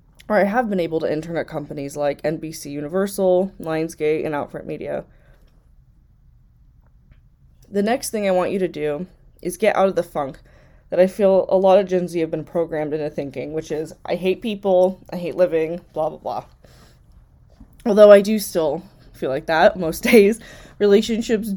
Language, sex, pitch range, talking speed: English, female, 155-200 Hz, 170 wpm